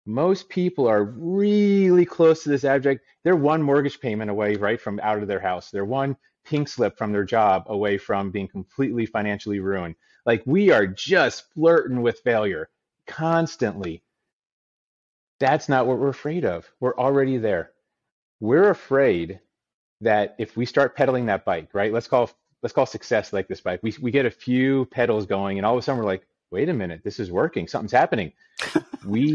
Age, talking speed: 30-49, 185 wpm